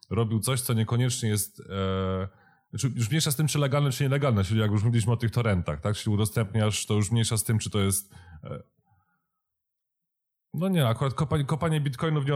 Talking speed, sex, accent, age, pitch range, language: 195 wpm, male, native, 30-49, 100-125 Hz, Polish